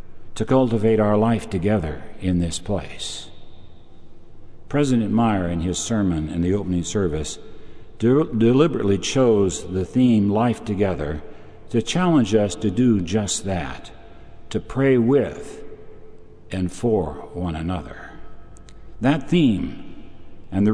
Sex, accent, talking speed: male, American, 120 wpm